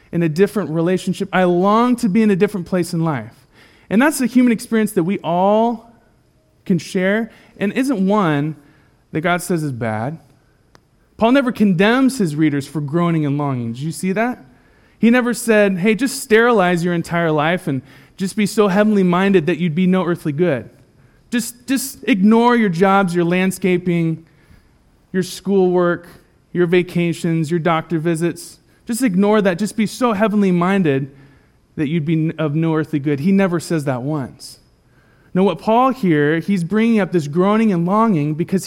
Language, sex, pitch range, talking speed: English, male, 150-205 Hz, 175 wpm